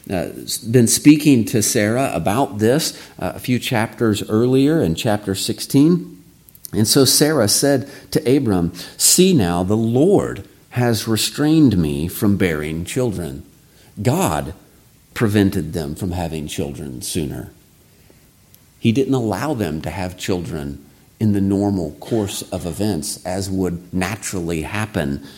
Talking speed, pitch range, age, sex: 130 wpm, 90-120 Hz, 50-69, male